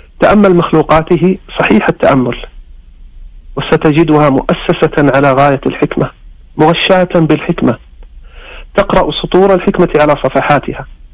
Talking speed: 85 wpm